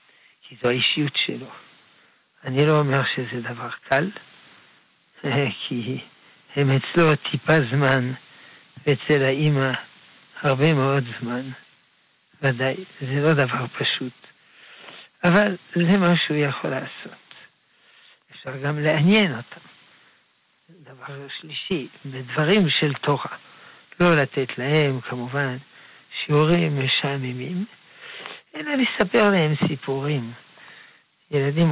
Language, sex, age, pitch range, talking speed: Hebrew, male, 60-79, 130-160 Hz, 95 wpm